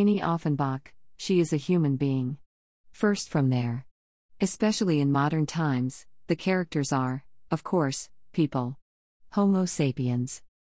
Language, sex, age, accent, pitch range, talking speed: English, female, 40-59, American, 130-175 Hz, 125 wpm